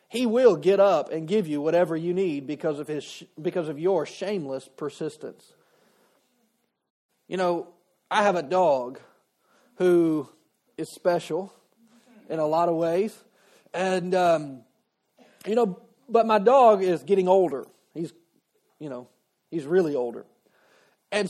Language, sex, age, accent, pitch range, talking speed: English, male, 40-59, American, 170-230 Hz, 140 wpm